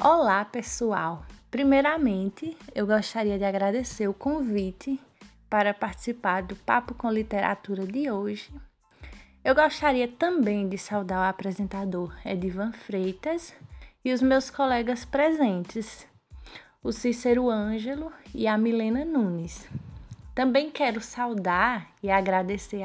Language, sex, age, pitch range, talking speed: Portuguese, female, 20-39, 195-255 Hz, 115 wpm